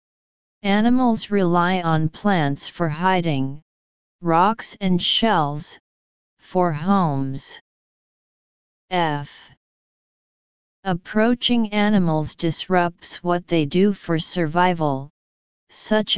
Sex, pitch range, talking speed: female, 160-200 Hz, 80 wpm